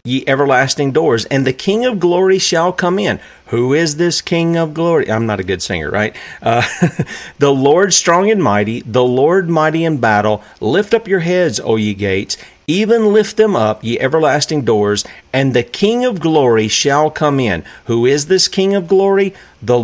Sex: male